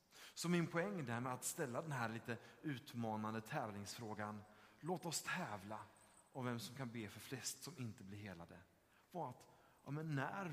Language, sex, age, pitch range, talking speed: Swedish, male, 30-49, 110-145 Hz, 155 wpm